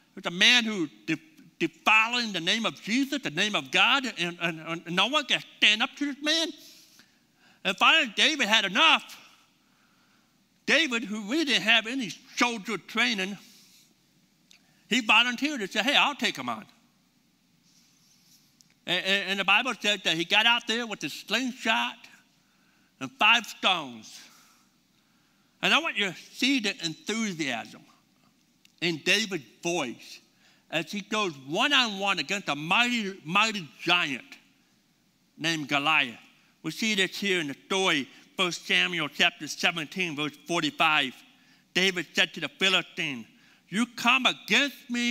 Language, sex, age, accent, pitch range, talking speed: English, male, 60-79, American, 180-255 Hz, 140 wpm